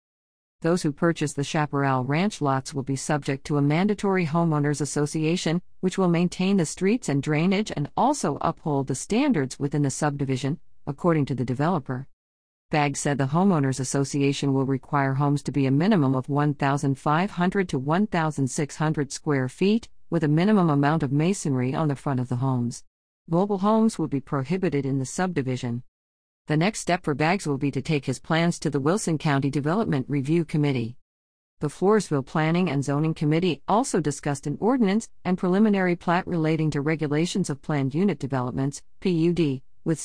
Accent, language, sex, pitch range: American, English, female, 140-175 Hz